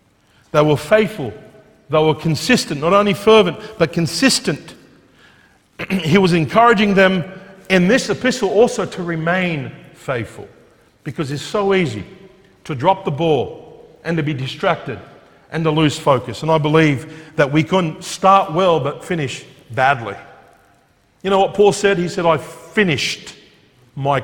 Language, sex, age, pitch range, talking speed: English, male, 50-69, 145-195 Hz, 145 wpm